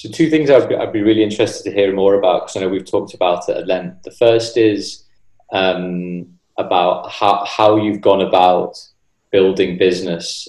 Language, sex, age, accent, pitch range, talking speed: English, male, 20-39, British, 90-100 Hz, 185 wpm